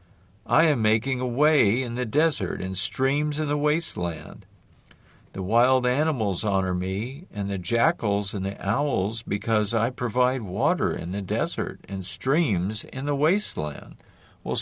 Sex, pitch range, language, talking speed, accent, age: male, 95-120 Hz, English, 150 wpm, American, 50-69